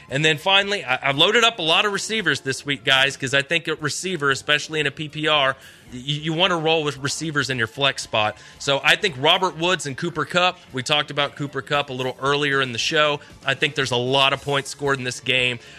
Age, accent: 30-49, American